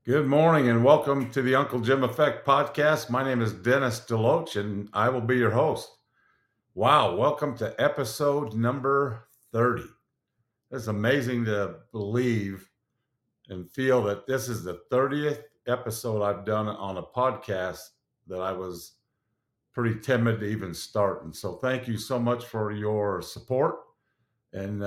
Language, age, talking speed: English, 50-69, 150 wpm